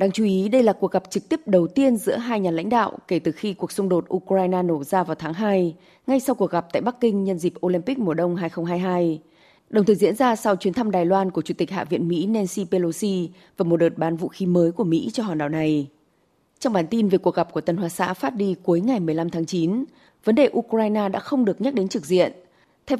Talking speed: 260 wpm